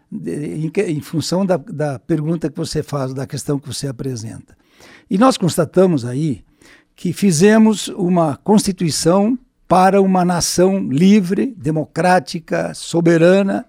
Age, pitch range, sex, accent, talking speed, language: 60-79, 160-210 Hz, male, Brazilian, 125 wpm, Portuguese